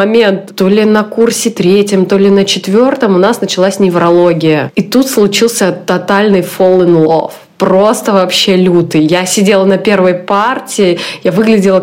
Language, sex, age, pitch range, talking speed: Russian, female, 20-39, 185-215 Hz, 155 wpm